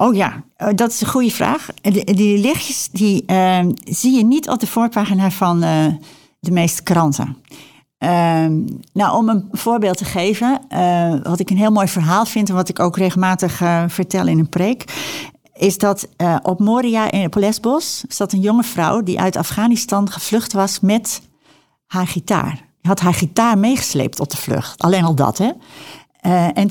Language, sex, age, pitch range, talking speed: Dutch, female, 60-79, 175-220 Hz, 185 wpm